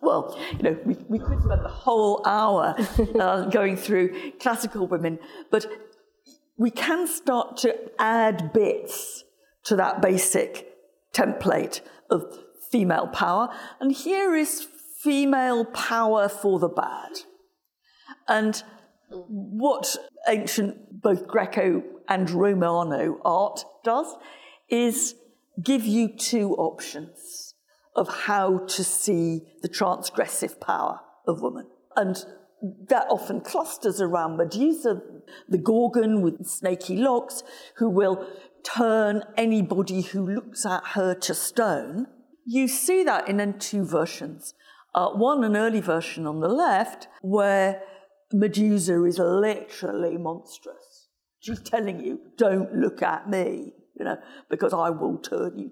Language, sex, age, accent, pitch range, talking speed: English, female, 50-69, British, 195-275 Hz, 125 wpm